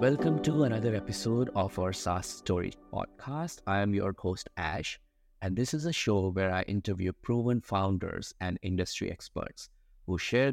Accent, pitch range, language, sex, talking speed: Indian, 95-115 Hz, English, male, 165 wpm